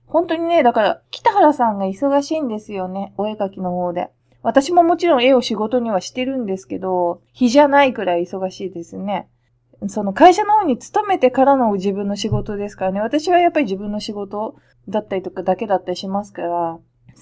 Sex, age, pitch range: female, 20-39, 190-265 Hz